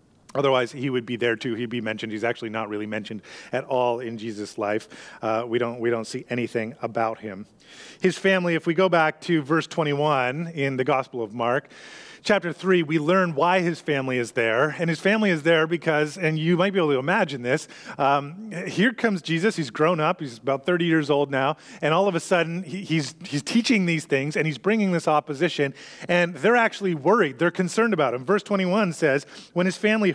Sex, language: male, English